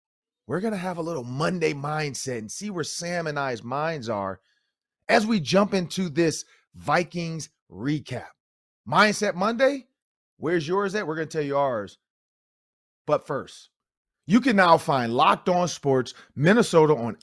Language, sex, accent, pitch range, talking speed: English, male, American, 135-185 Hz, 150 wpm